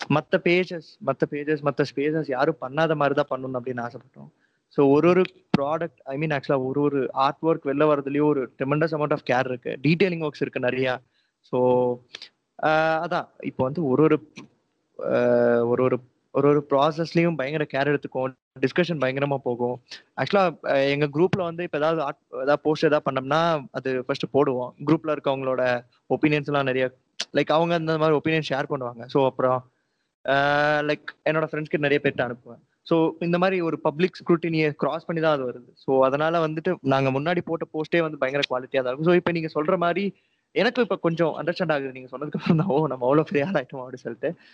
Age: 20-39